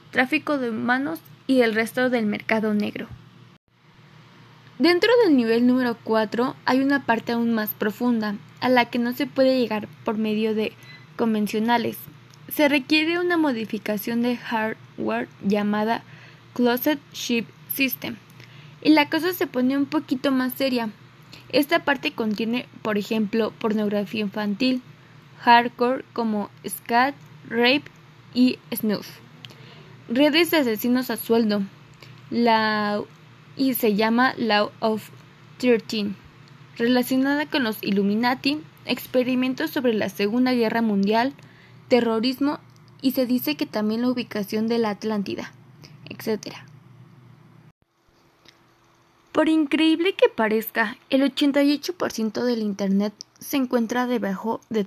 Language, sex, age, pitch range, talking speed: Spanish, female, 20-39, 210-265 Hz, 120 wpm